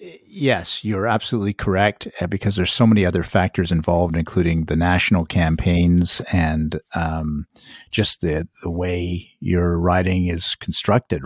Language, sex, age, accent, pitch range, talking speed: English, male, 50-69, American, 90-115 Hz, 135 wpm